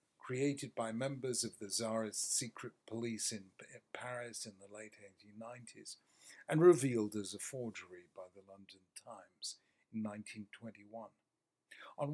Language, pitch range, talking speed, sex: English, 110-130 Hz, 130 wpm, male